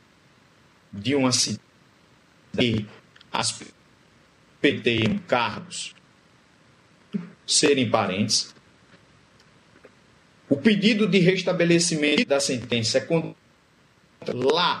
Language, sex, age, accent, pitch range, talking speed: Portuguese, male, 40-59, Brazilian, 145-210 Hz, 75 wpm